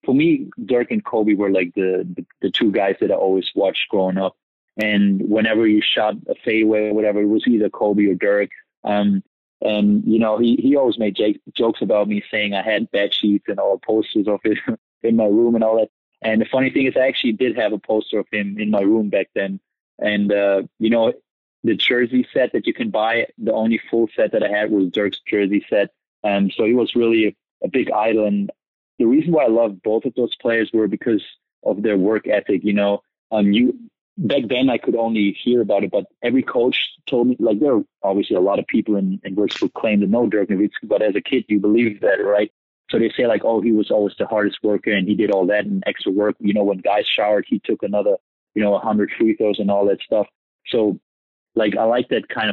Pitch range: 100-110 Hz